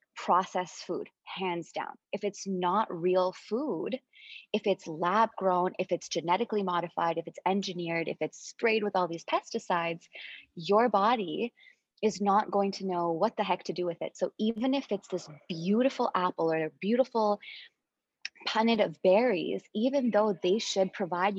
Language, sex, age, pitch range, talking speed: English, female, 20-39, 180-230 Hz, 165 wpm